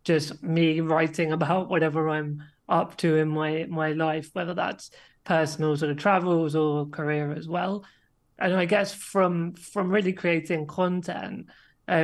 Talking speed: 155 wpm